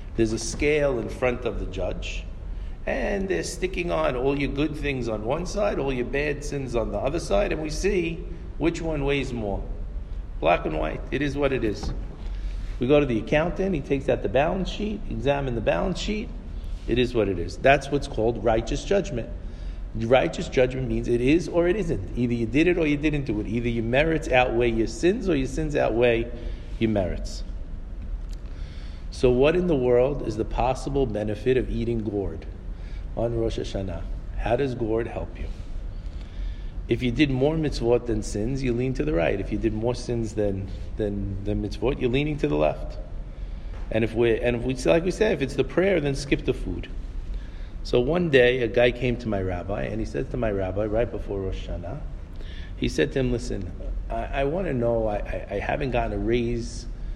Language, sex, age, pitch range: English, male, 50-69, 95-135 Hz